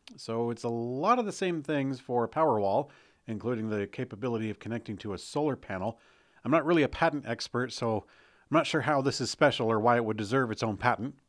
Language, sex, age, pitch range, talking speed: English, male, 40-59, 110-140 Hz, 220 wpm